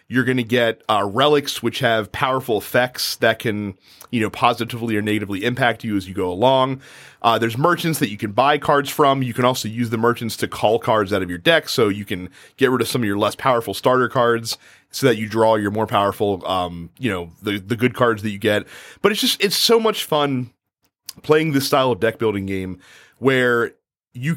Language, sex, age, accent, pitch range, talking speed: English, male, 30-49, American, 110-140 Hz, 225 wpm